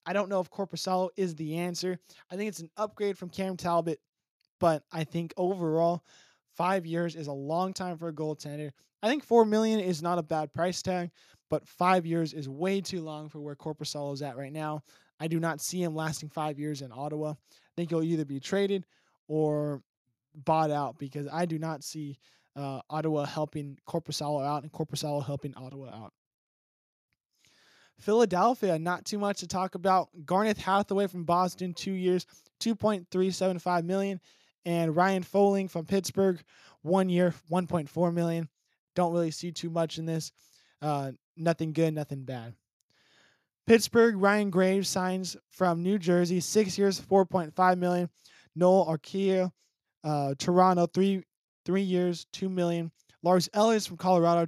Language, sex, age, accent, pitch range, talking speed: English, male, 20-39, American, 155-185 Hz, 170 wpm